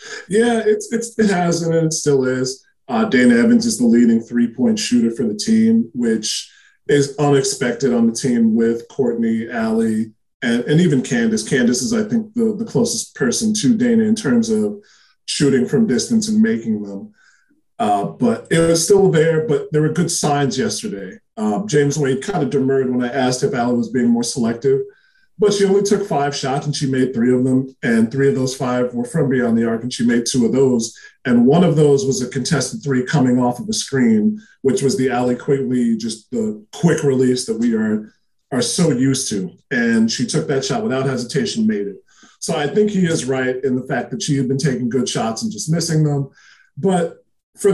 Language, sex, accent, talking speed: English, male, American, 210 wpm